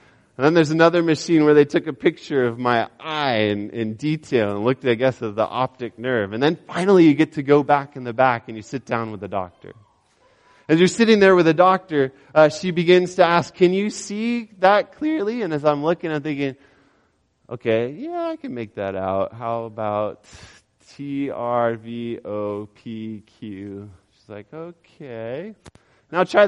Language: English